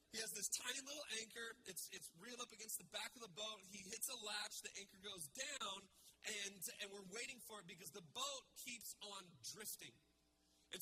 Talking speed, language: 205 wpm, English